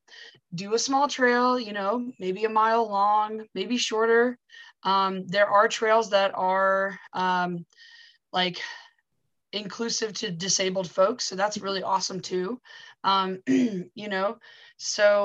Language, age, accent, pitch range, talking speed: English, 20-39, American, 185-230 Hz, 130 wpm